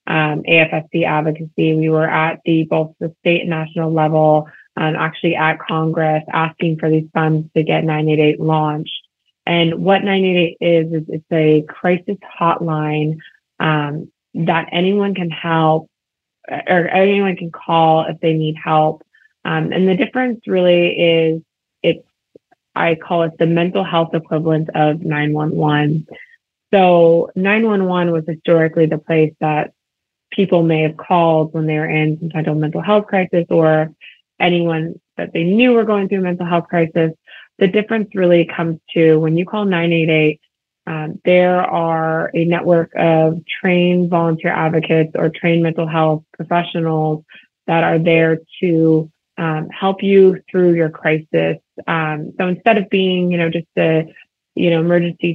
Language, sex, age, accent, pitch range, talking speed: English, female, 20-39, American, 155-175 Hz, 150 wpm